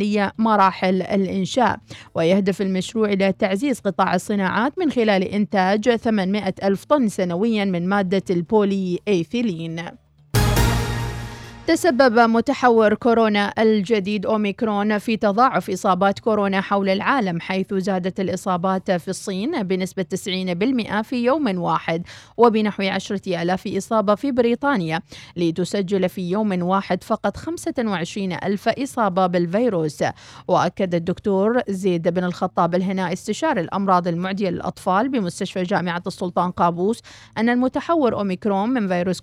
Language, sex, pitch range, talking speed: Arabic, female, 180-220 Hz, 110 wpm